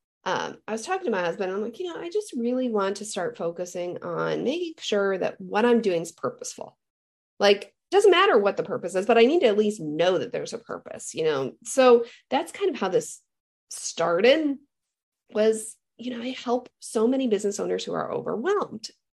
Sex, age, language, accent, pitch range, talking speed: female, 40-59, English, American, 200-290 Hz, 210 wpm